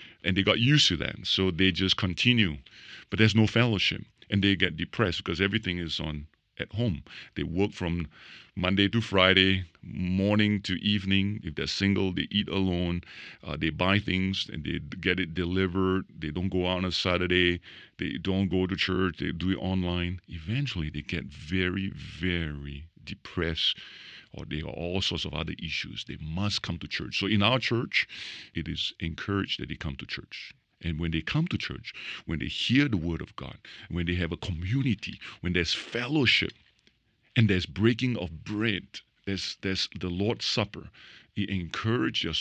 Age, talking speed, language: 50-69, 180 wpm, English